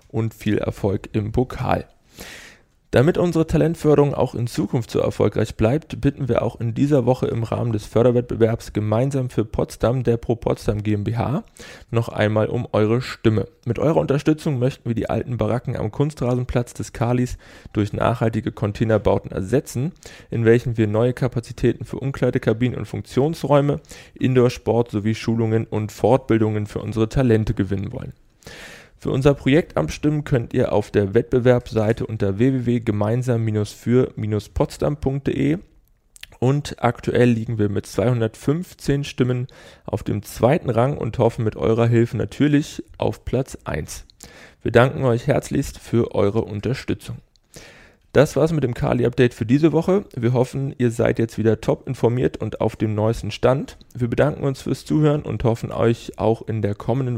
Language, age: German, 20-39